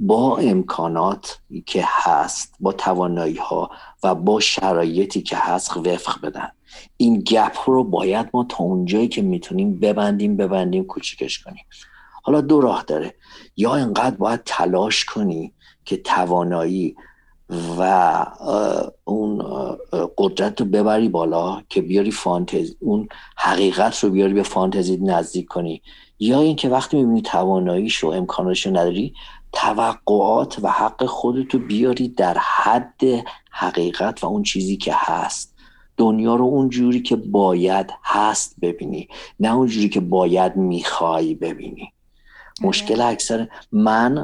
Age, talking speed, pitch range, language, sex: 50-69, 125 wpm, 90-125 Hz, Persian, male